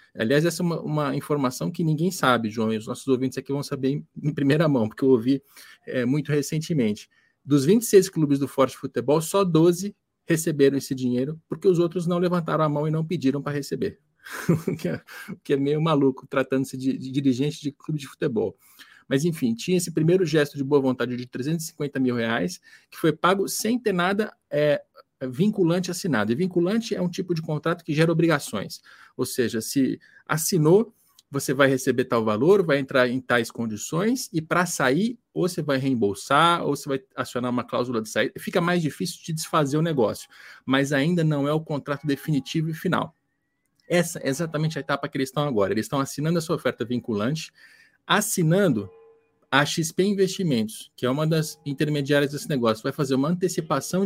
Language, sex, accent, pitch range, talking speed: Portuguese, male, Brazilian, 135-175 Hz, 190 wpm